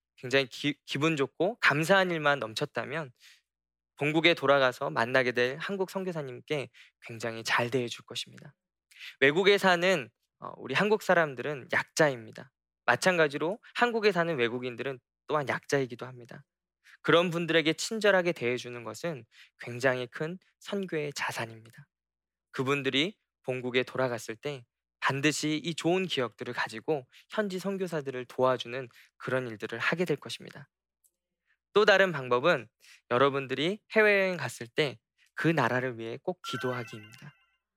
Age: 20-39